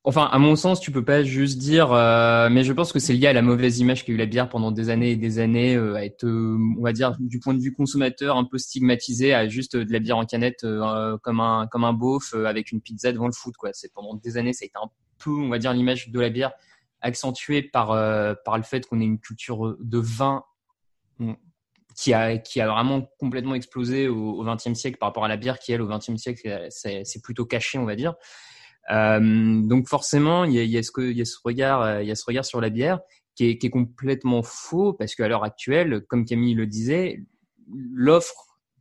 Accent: French